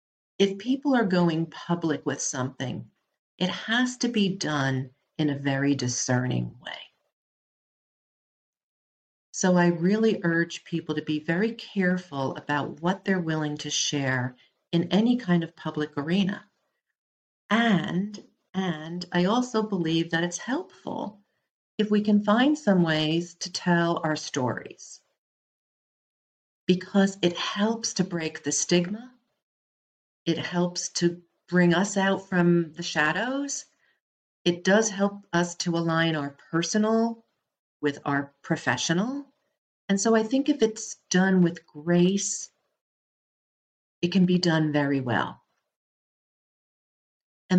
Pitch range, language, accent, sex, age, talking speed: 155-200 Hz, English, American, female, 50-69, 125 wpm